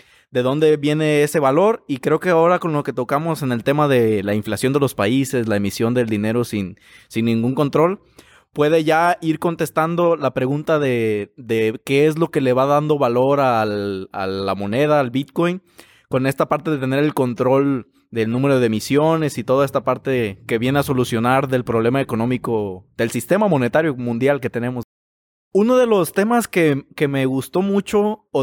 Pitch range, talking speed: 125-160 Hz, 190 wpm